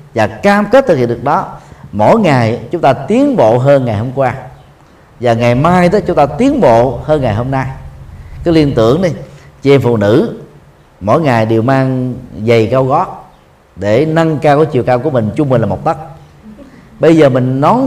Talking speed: 200 wpm